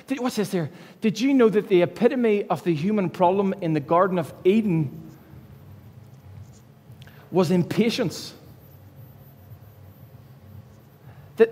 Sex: male